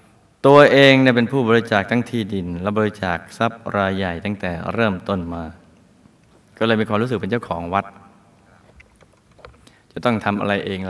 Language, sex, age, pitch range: Thai, male, 20-39, 95-120 Hz